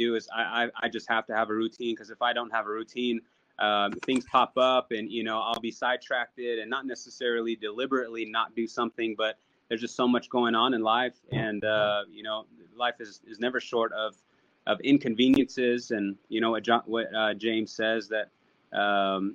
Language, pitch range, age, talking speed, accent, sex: English, 110-120 Hz, 20-39, 200 wpm, American, male